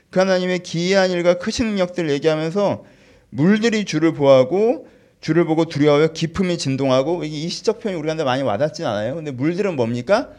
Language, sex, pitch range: Korean, male, 135-210 Hz